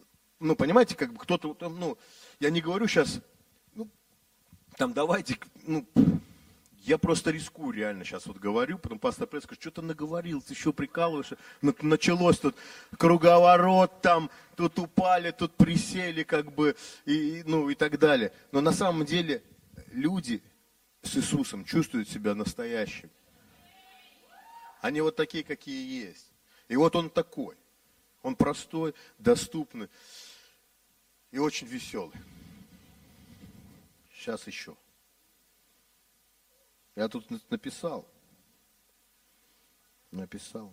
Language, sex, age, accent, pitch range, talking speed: Russian, male, 40-59, native, 155-245 Hz, 110 wpm